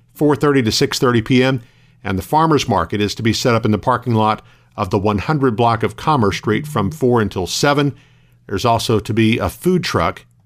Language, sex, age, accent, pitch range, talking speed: English, male, 50-69, American, 115-140 Hz, 195 wpm